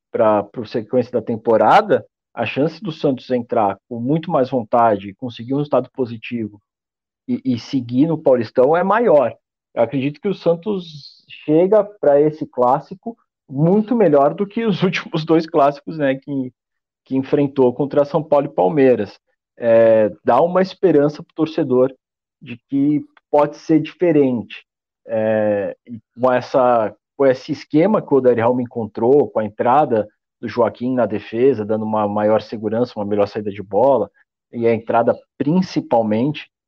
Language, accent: Portuguese, Brazilian